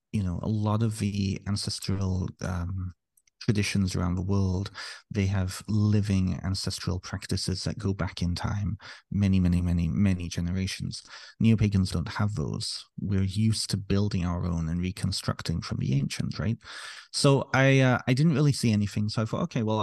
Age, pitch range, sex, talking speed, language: 30-49, 90-110 Hz, male, 175 wpm, English